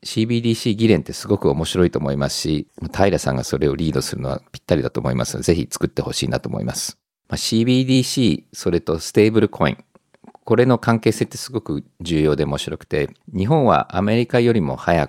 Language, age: Japanese, 50-69